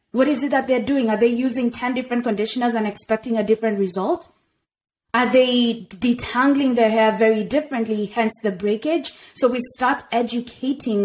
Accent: South African